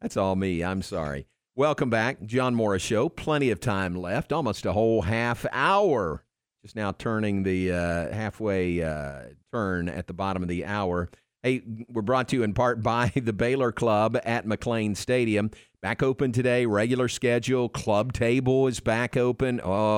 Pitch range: 100-125 Hz